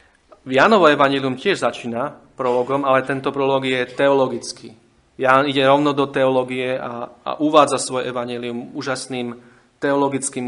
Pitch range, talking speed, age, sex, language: 120-130 Hz, 130 wpm, 30-49, male, Slovak